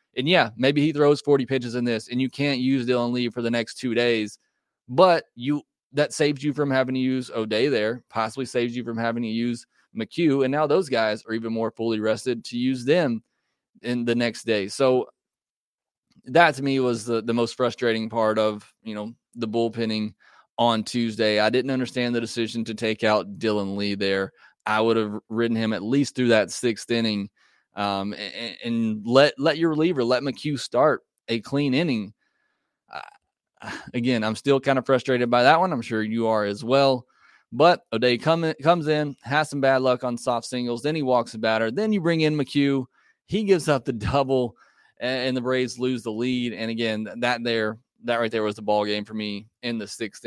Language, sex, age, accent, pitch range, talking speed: English, male, 20-39, American, 110-130 Hz, 210 wpm